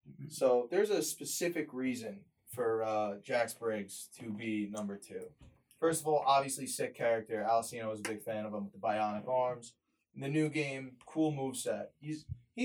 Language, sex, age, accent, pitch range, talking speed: English, male, 20-39, American, 115-155 Hz, 180 wpm